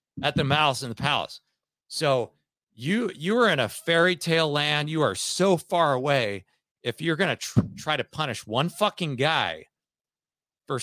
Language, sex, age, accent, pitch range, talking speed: English, male, 40-59, American, 105-150 Hz, 175 wpm